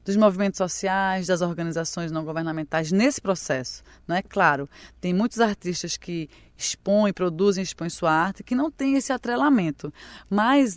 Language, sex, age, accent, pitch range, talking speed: Portuguese, female, 20-39, Brazilian, 180-225 Hz, 150 wpm